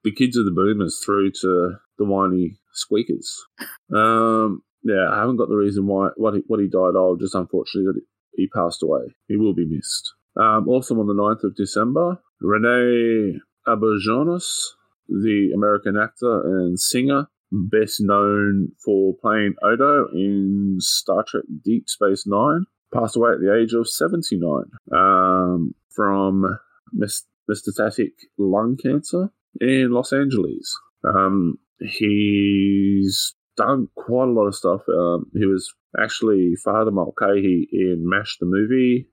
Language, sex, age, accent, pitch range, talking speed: English, male, 20-39, Australian, 95-115 Hz, 145 wpm